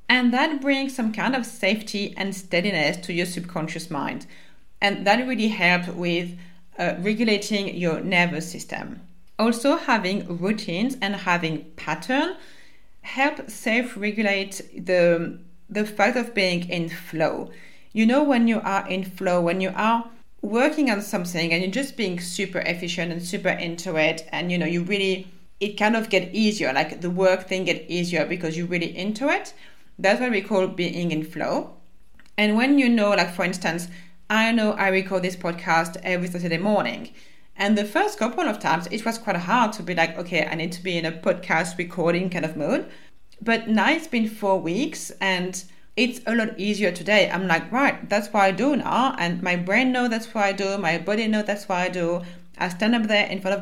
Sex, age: female, 30-49